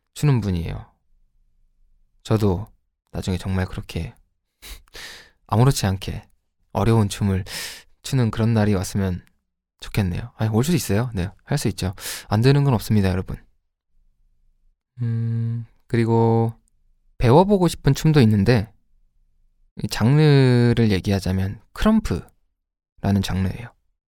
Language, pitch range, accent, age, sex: Korean, 85-115 Hz, native, 20-39, male